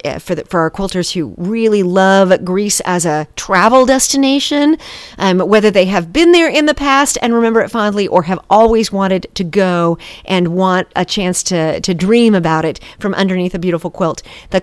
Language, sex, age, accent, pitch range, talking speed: English, female, 40-59, American, 175-245 Hz, 195 wpm